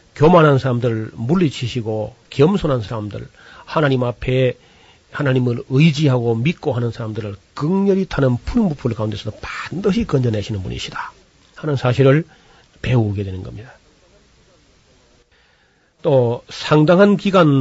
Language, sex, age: Korean, male, 40-59